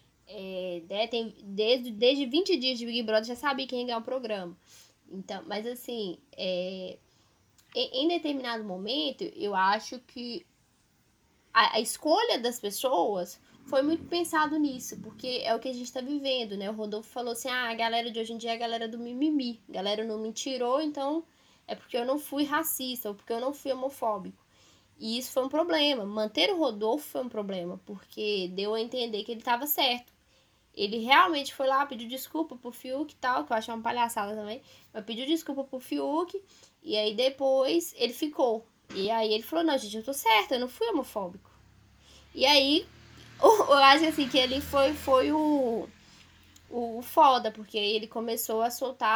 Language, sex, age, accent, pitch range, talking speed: Portuguese, female, 10-29, Brazilian, 210-270 Hz, 185 wpm